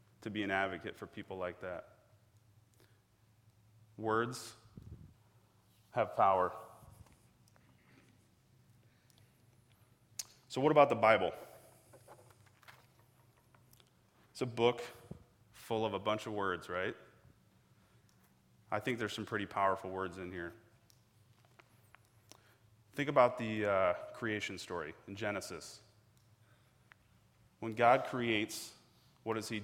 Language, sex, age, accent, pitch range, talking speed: English, male, 30-49, American, 105-120 Hz, 100 wpm